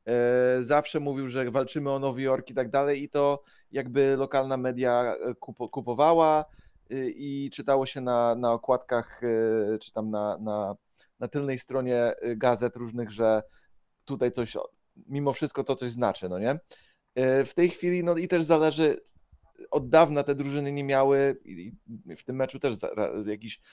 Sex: male